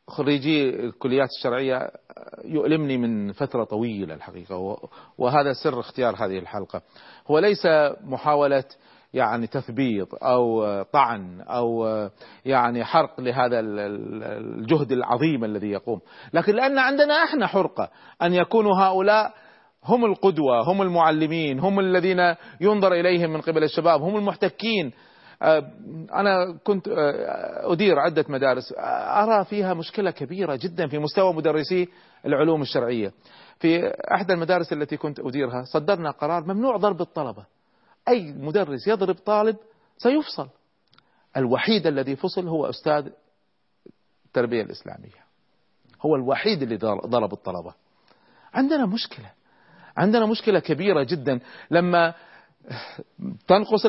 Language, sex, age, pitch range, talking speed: Arabic, male, 40-59, 130-195 Hz, 110 wpm